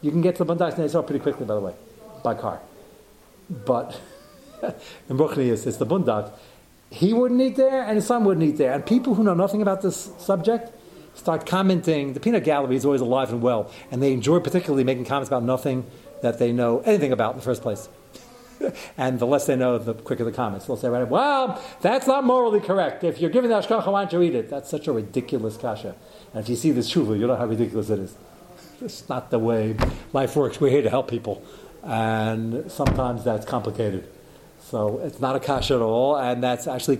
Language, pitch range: English, 130-190 Hz